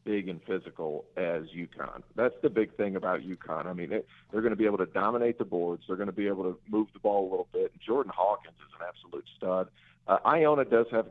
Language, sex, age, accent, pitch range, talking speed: English, male, 50-69, American, 95-120 Hz, 245 wpm